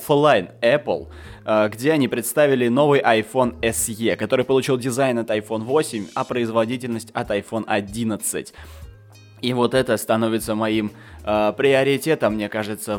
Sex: male